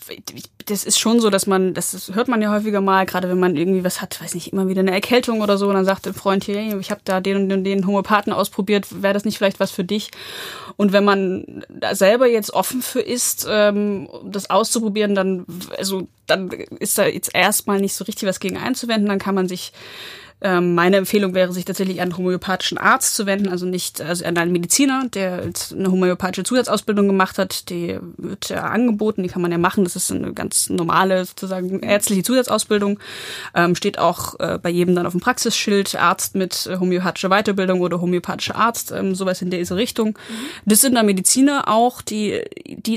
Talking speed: 200 wpm